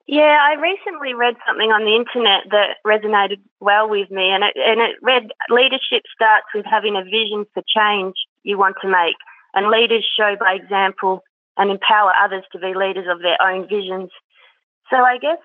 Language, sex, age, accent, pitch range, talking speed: English, female, 20-39, Australian, 205-235 Hz, 185 wpm